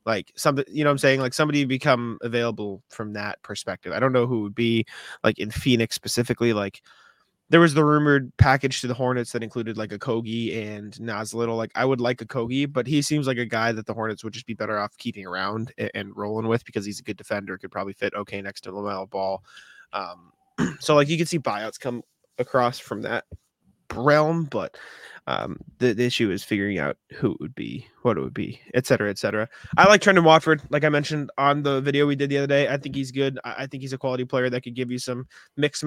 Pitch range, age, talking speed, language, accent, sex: 105-130 Hz, 20-39, 235 wpm, English, American, male